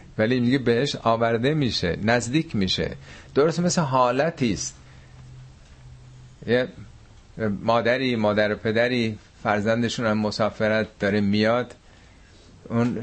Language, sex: Persian, male